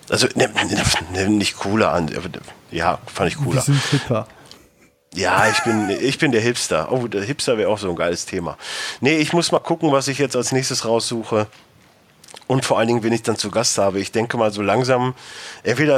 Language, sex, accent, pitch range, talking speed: German, male, German, 100-130 Hz, 220 wpm